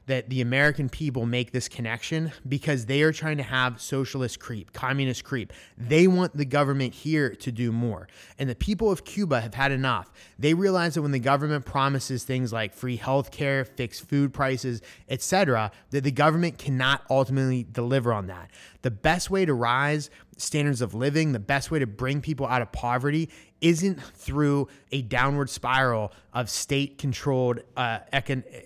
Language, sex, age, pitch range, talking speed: English, male, 30-49, 120-145 Hz, 170 wpm